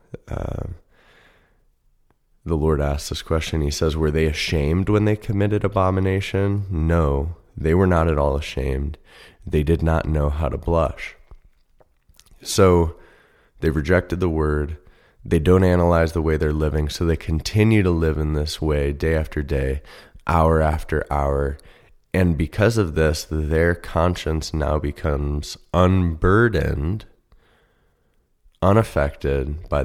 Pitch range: 75-85 Hz